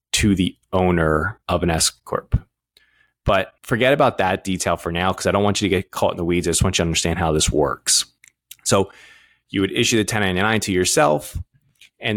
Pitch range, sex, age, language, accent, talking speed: 85-105 Hz, male, 20-39, English, American, 210 wpm